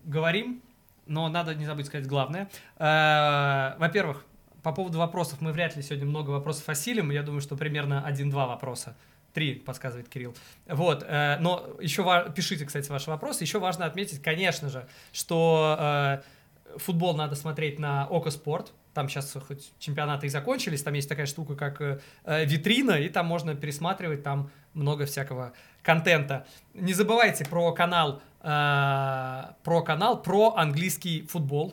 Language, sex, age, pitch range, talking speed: Russian, male, 20-39, 145-175 Hz, 140 wpm